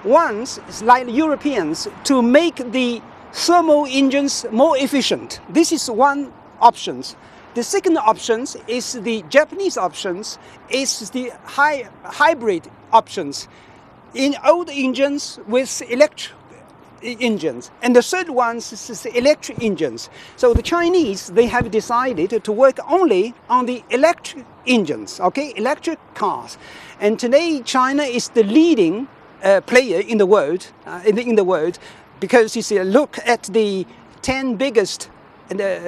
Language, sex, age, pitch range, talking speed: English, male, 60-79, 225-300 Hz, 135 wpm